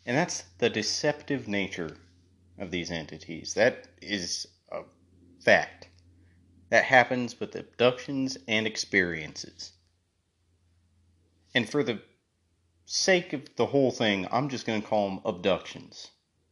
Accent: American